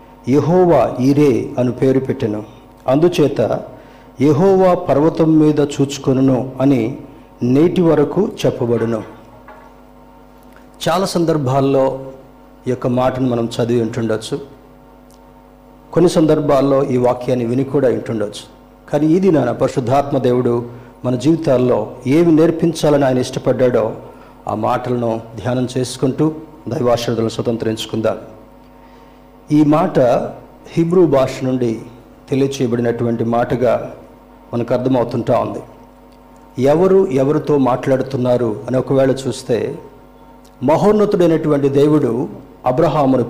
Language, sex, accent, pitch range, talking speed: Telugu, male, native, 125-155 Hz, 90 wpm